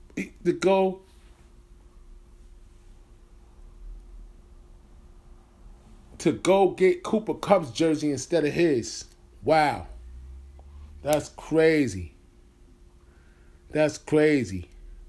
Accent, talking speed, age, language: American, 65 wpm, 30-49, English